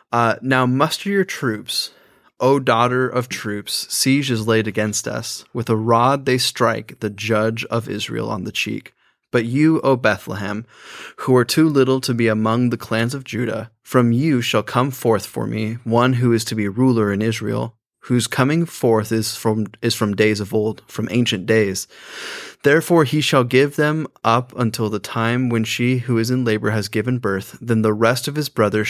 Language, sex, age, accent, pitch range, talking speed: English, male, 20-39, American, 110-125 Hz, 195 wpm